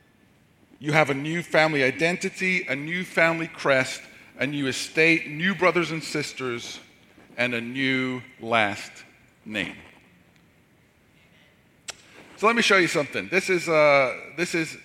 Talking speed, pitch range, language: 125 wpm, 135-185 Hz, English